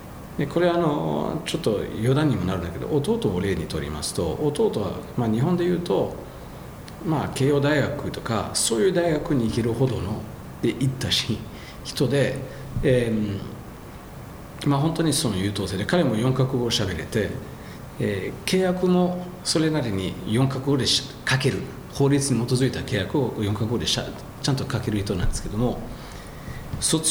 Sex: male